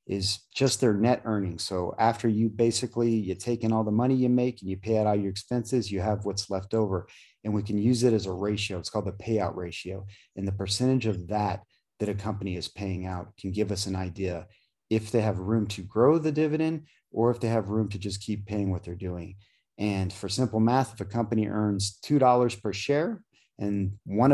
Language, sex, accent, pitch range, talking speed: English, male, American, 100-125 Hz, 225 wpm